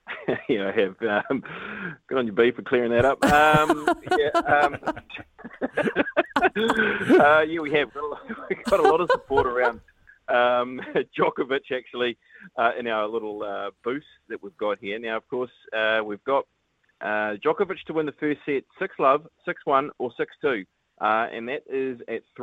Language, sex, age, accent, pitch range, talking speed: English, male, 30-49, Australian, 105-145 Hz, 170 wpm